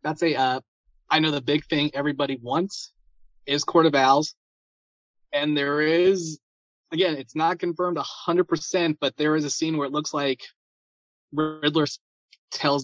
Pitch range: 125-165 Hz